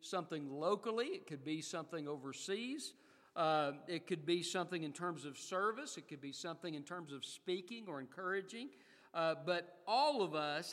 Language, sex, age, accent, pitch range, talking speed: English, male, 50-69, American, 155-195 Hz, 175 wpm